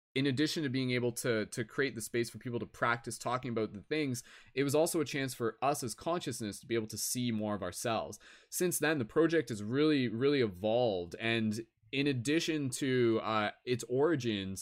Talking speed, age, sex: 205 wpm, 20-39, male